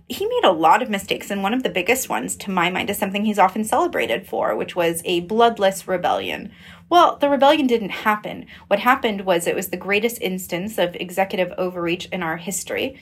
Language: English